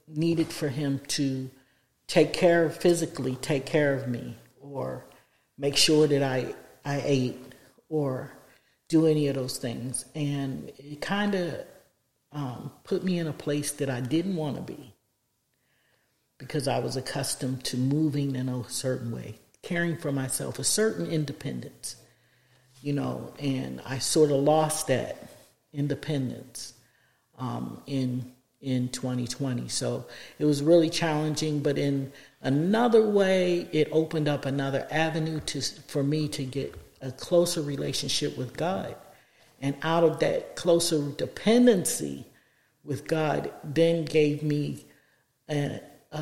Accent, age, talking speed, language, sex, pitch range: American, 50-69, 135 wpm, English, male, 130-155 Hz